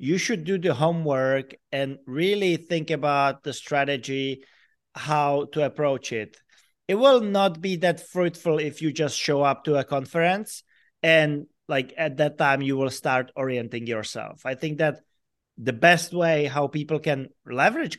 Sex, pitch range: male, 140-175 Hz